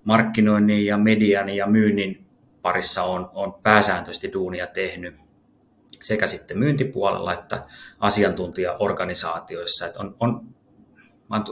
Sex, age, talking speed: male, 30-49, 95 wpm